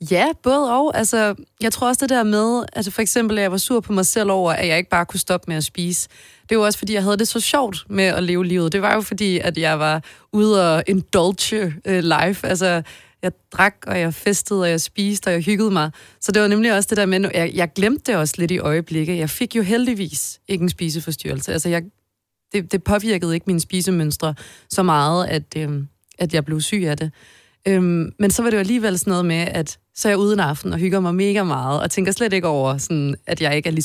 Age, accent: 30-49, native